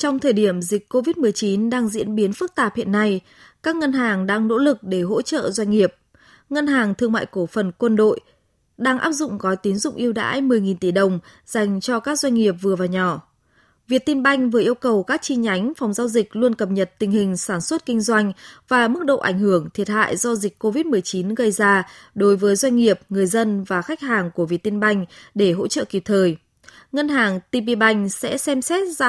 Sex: female